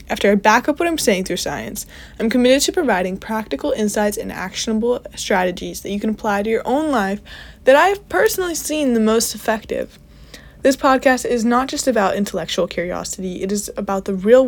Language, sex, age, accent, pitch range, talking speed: English, female, 20-39, American, 195-255 Hz, 190 wpm